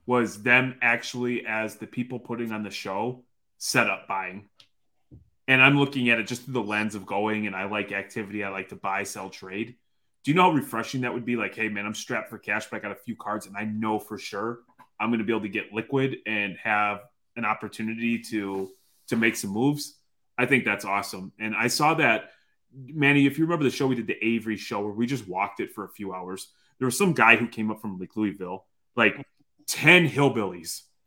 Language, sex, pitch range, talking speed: English, male, 105-125 Hz, 230 wpm